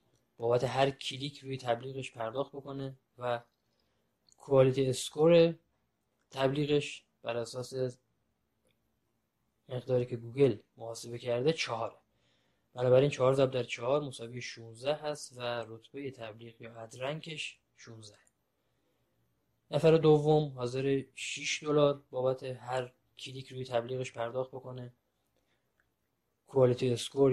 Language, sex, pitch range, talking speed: Persian, male, 120-140 Hz, 110 wpm